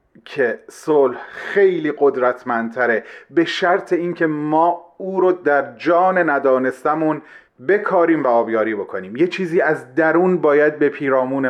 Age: 40-59